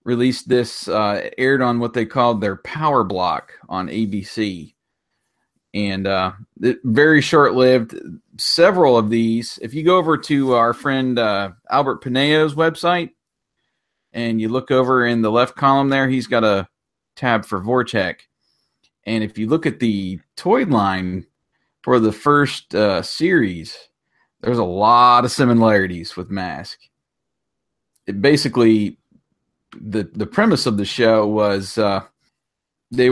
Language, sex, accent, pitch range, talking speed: English, male, American, 110-135 Hz, 140 wpm